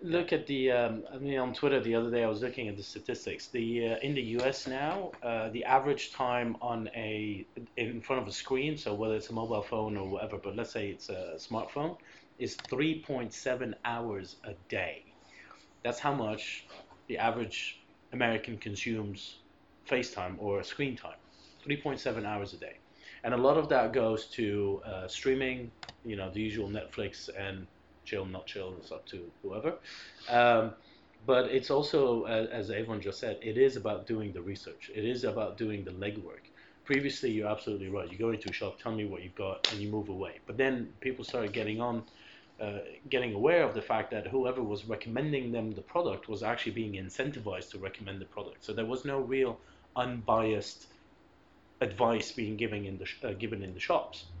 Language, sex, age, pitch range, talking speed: English, male, 30-49, 105-125 Hz, 190 wpm